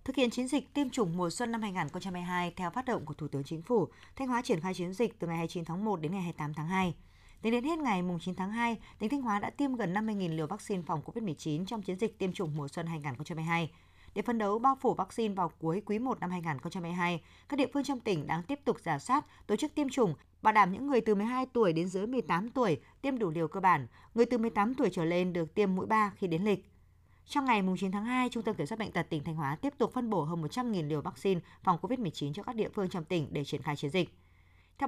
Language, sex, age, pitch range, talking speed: Vietnamese, female, 20-39, 160-220 Hz, 260 wpm